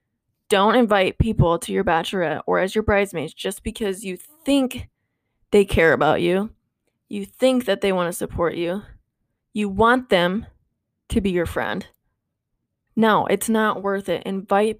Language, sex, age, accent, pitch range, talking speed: English, female, 20-39, American, 175-215 Hz, 160 wpm